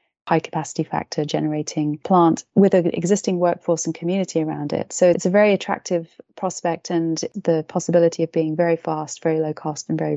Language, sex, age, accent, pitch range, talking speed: English, female, 30-49, British, 160-185 Hz, 185 wpm